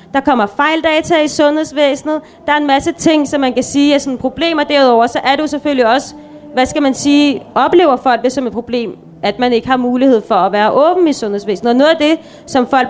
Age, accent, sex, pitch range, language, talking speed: 30-49, native, female, 255-305 Hz, Danish, 235 wpm